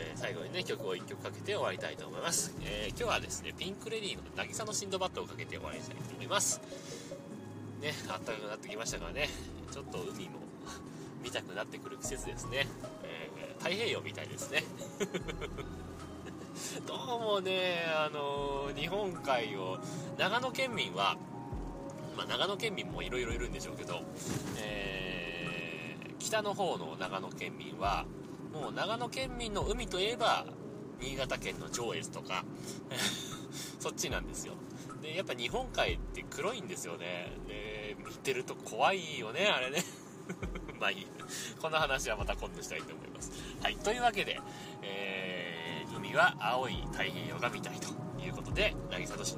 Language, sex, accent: Japanese, male, native